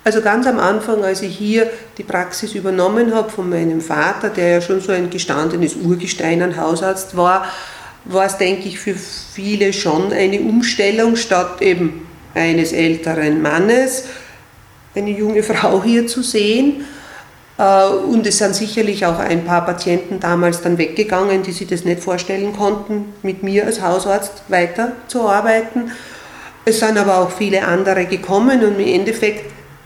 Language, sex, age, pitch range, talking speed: German, female, 40-59, 175-210 Hz, 155 wpm